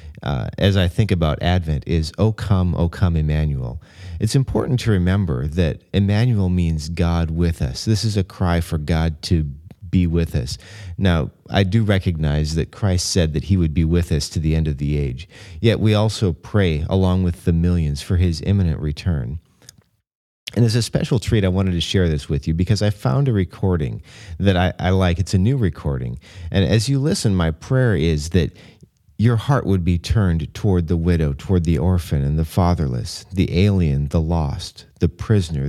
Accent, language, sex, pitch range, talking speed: American, English, male, 80-105 Hz, 195 wpm